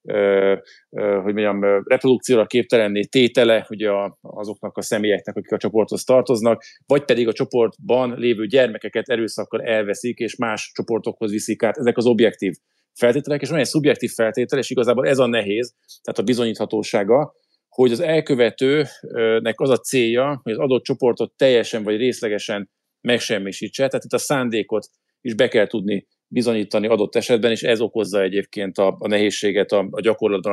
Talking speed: 155 wpm